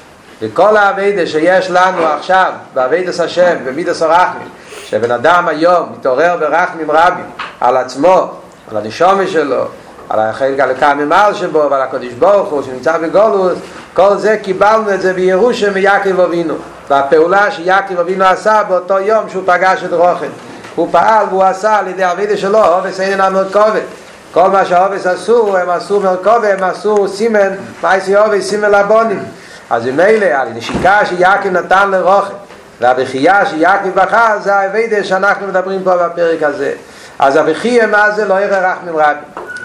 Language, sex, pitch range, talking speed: Hebrew, male, 170-205 Hz, 150 wpm